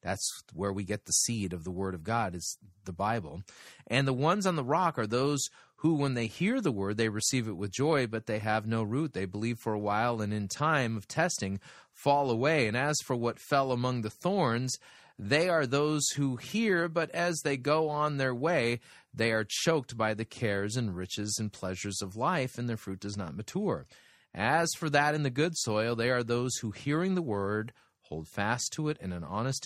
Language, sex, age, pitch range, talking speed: English, male, 30-49, 105-145 Hz, 220 wpm